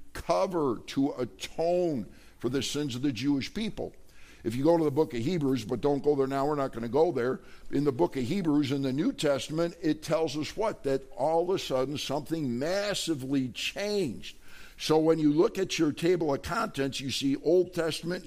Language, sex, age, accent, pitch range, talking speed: English, male, 60-79, American, 135-170 Hz, 205 wpm